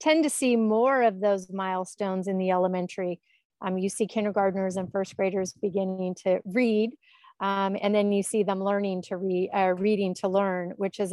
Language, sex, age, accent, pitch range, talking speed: English, female, 40-59, American, 190-225 Hz, 185 wpm